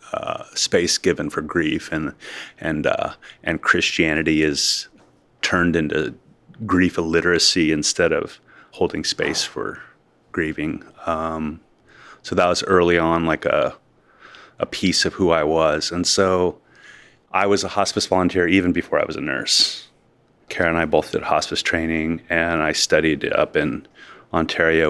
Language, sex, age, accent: English, male, 30-49, American